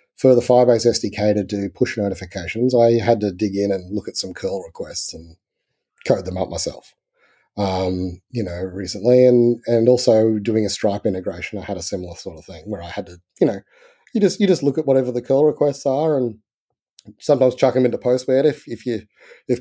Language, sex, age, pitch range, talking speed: English, male, 30-49, 100-140 Hz, 210 wpm